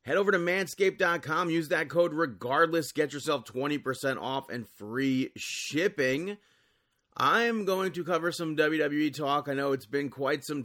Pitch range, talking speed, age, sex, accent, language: 140-190 Hz, 160 wpm, 30-49, male, American, English